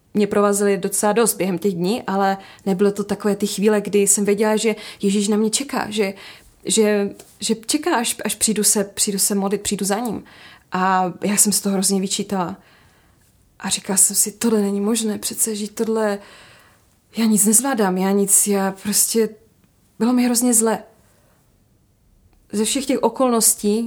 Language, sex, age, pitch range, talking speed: English, female, 20-39, 190-215 Hz, 170 wpm